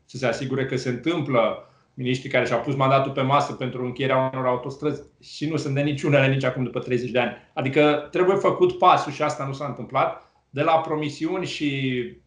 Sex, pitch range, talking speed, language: male, 135-185 Hz, 200 wpm, Romanian